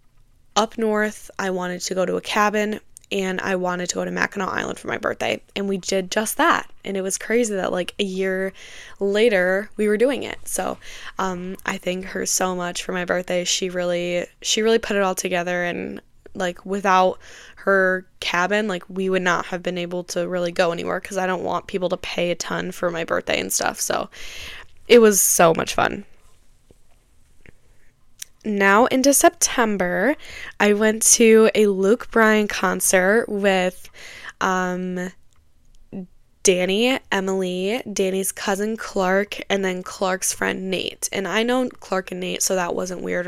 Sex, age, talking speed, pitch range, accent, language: female, 10-29, 170 wpm, 180-210 Hz, American, English